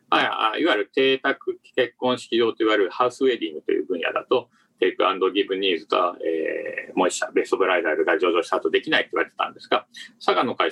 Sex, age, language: male, 40-59, Japanese